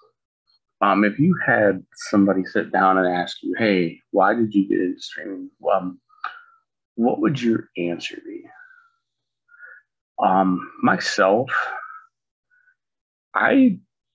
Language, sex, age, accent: English, male, 30-49, American